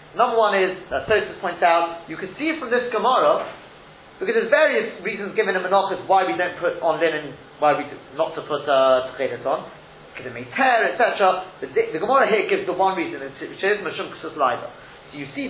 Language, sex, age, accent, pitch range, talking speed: English, male, 40-59, British, 160-230 Hz, 220 wpm